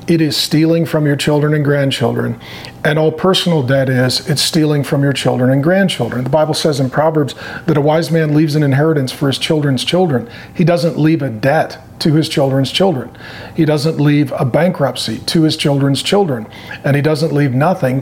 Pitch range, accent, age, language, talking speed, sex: 135-170 Hz, American, 40-59, English, 195 wpm, male